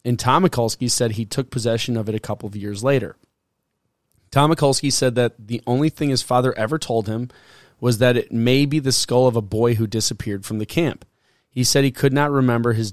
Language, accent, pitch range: English, American, 115-130 Hz